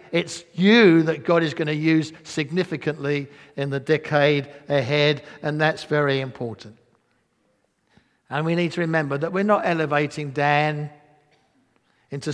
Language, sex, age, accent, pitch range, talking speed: English, male, 60-79, British, 135-165 Hz, 135 wpm